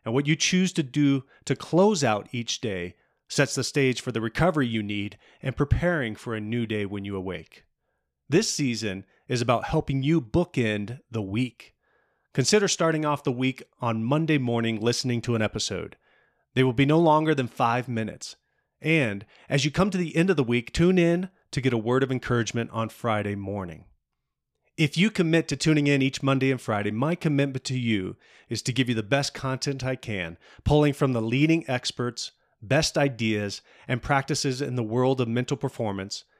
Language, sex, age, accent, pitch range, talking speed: English, male, 30-49, American, 115-145 Hz, 190 wpm